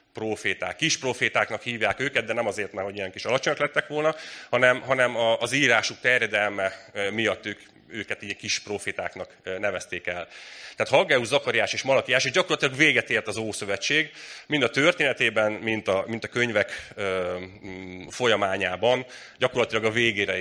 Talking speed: 145 wpm